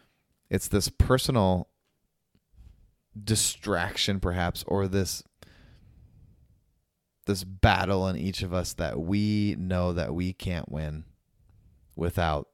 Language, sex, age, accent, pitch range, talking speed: English, male, 20-39, American, 85-100 Hz, 100 wpm